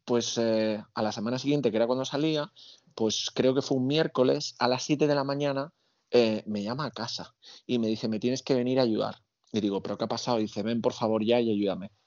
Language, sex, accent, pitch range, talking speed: Spanish, male, Spanish, 105-130 Hz, 250 wpm